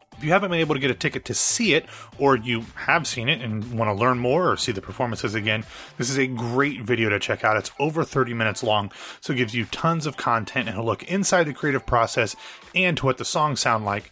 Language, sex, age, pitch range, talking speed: English, male, 30-49, 115-155 Hz, 260 wpm